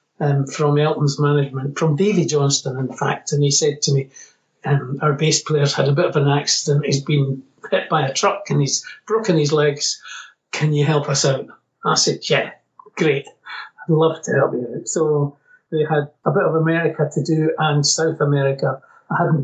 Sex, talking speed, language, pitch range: male, 200 wpm, English, 145-180 Hz